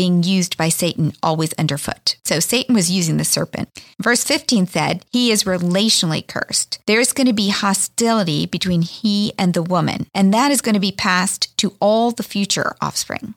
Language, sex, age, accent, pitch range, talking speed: English, female, 40-59, American, 170-220 Hz, 190 wpm